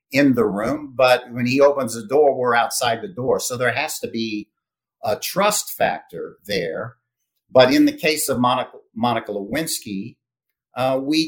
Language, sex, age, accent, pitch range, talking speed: English, male, 50-69, American, 120-165 Hz, 170 wpm